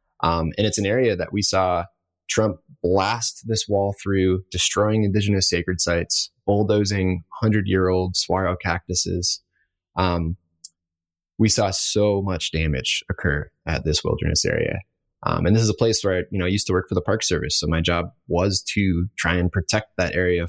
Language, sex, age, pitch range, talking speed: English, male, 20-39, 85-105 Hz, 175 wpm